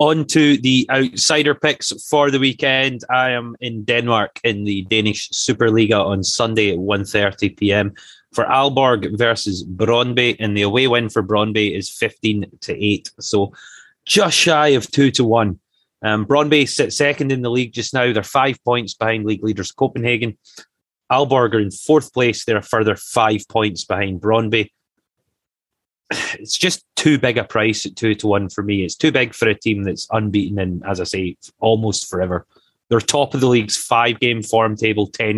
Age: 30-49